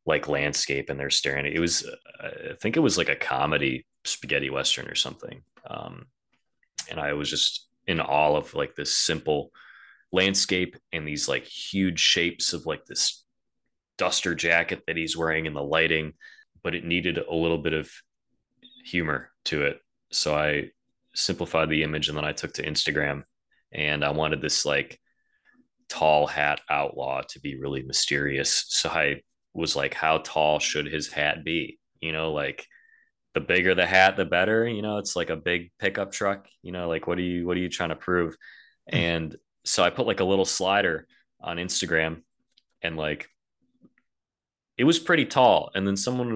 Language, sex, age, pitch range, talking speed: English, male, 20-39, 75-90 Hz, 180 wpm